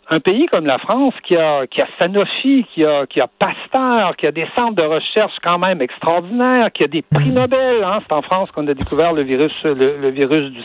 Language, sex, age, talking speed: French, male, 60-79, 235 wpm